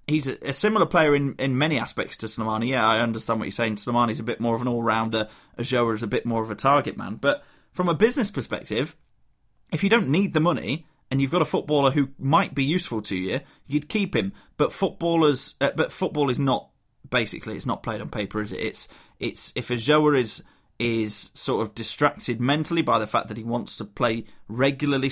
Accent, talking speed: British, 215 wpm